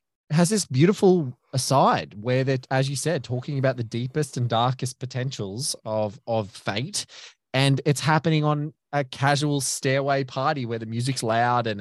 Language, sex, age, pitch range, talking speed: English, male, 20-39, 110-130 Hz, 165 wpm